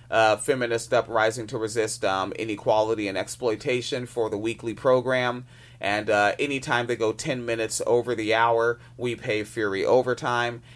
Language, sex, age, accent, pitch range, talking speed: English, male, 30-49, American, 110-125 Hz, 150 wpm